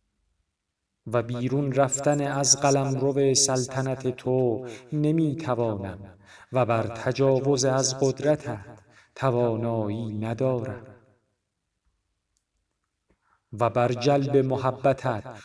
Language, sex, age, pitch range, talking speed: Persian, male, 40-59, 110-135 Hz, 80 wpm